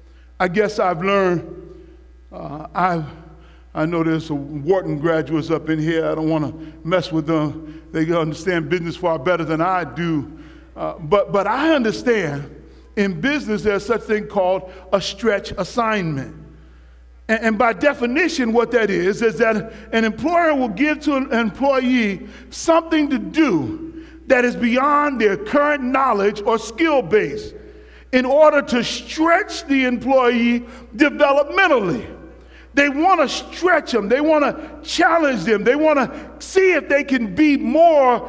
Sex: male